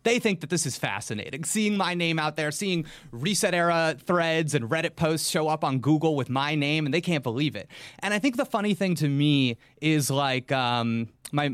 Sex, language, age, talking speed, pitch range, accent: male, English, 30-49, 220 wpm, 135-190 Hz, American